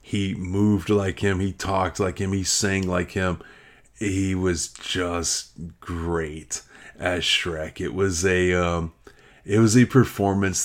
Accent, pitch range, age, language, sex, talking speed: American, 85-95 Hz, 30-49, English, male, 145 wpm